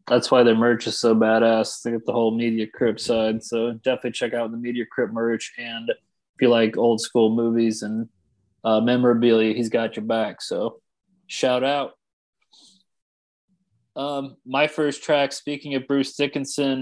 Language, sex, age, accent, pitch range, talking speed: English, male, 20-39, American, 115-135 Hz, 170 wpm